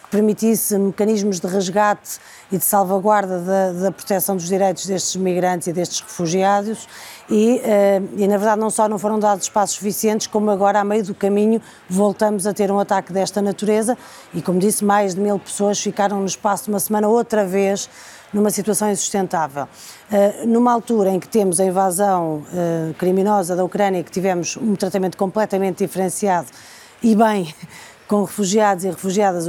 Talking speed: 170 wpm